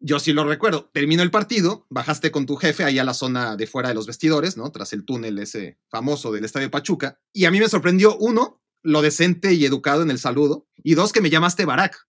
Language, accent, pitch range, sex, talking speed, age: Spanish, Mexican, 130-165 Hz, male, 240 wpm, 30-49